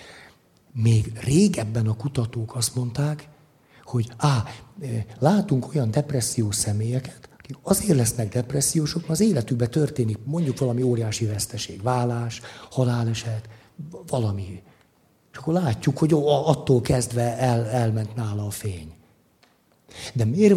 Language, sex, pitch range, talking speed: Hungarian, male, 110-145 Hz, 110 wpm